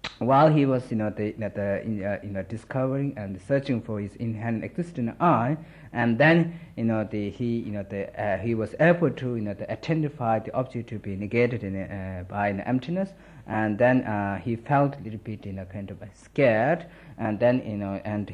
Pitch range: 105-135 Hz